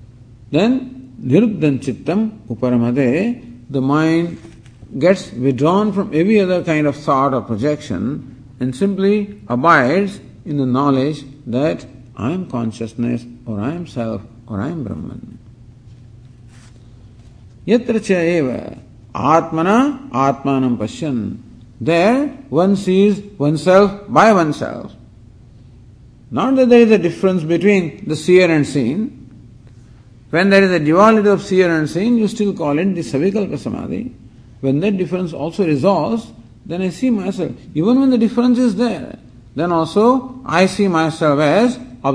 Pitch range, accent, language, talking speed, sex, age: 120-195 Hz, Indian, English, 130 wpm, male, 50-69